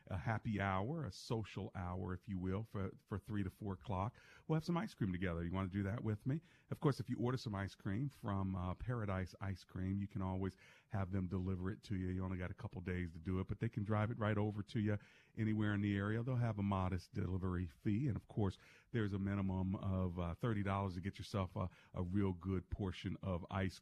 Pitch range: 95-115 Hz